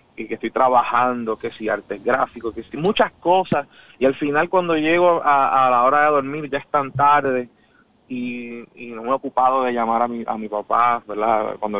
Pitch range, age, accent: 120-140 Hz, 30-49, Venezuelan